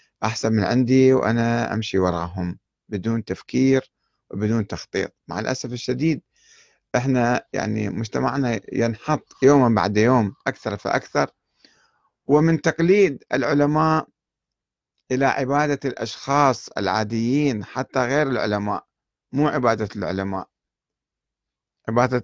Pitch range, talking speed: 110-145 Hz, 95 wpm